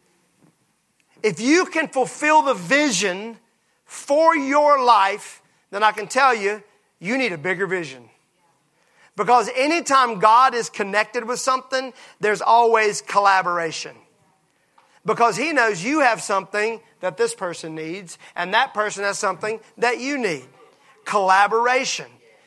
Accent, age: American, 40-59